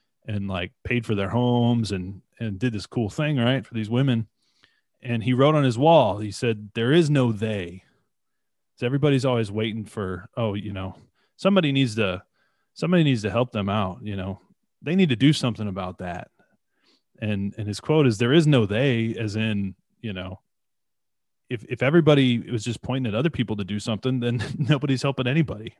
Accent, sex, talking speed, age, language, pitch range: American, male, 195 wpm, 30-49, English, 105-130 Hz